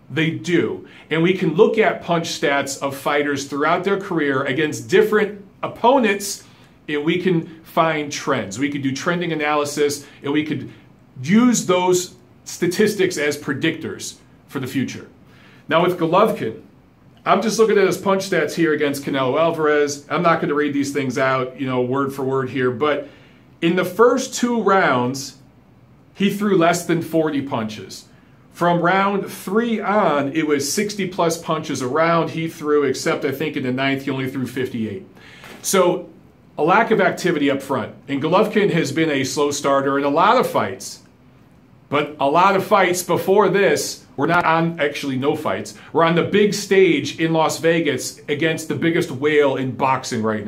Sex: male